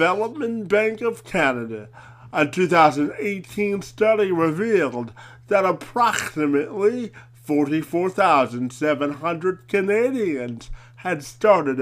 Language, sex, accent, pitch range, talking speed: English, male, American, 130-200 Hz, 70 wpm